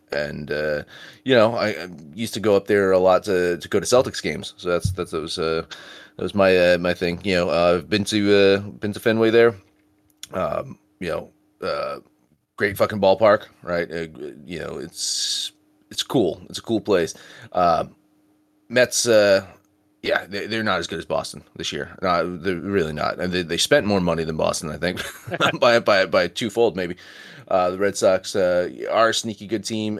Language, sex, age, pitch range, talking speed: English, male, 30-49, 90-110 Hz, 200 wpm